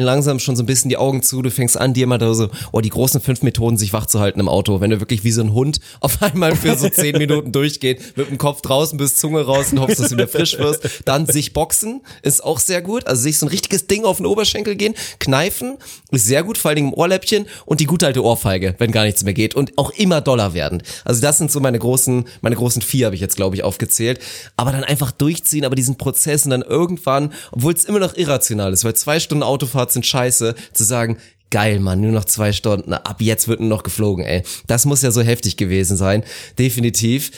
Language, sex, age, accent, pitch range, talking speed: German, male, 30-49, German, 115-145 Hz, 240 wpm